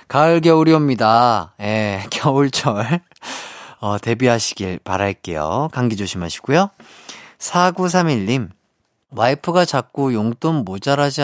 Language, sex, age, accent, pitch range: Korean, male, 30-49, native, 105-155 Hz